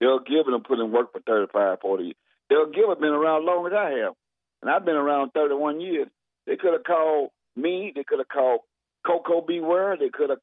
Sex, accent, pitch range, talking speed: male, American, 135-185 Hz, 235 wpm